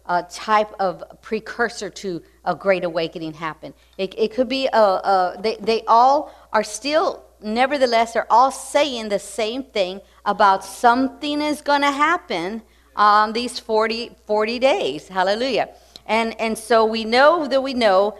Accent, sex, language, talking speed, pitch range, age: American, female, English, 160 wpm, 185-230 Hz, 50-69